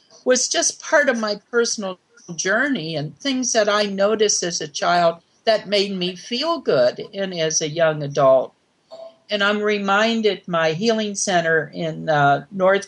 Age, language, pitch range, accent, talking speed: 60-79, English, 160-225 Hz, American, 160 wpm